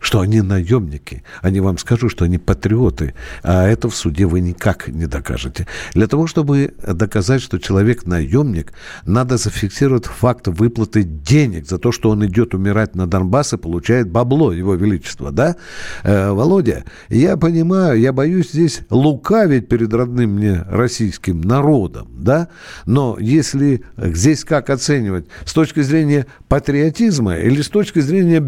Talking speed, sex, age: 145 wpm, male, 60-79